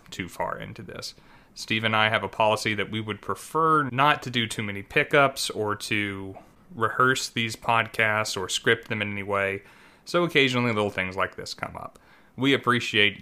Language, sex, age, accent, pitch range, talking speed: English, male, 30-49, American, 100-120 Hz, 185 wpm